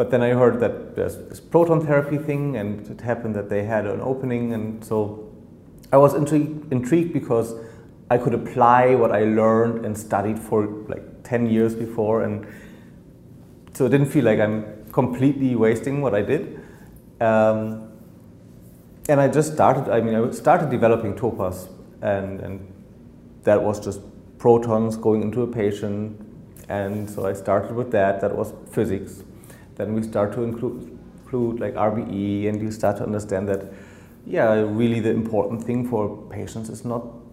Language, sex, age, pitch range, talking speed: English, male, 30-49, 105-120 Hz, 160 wpm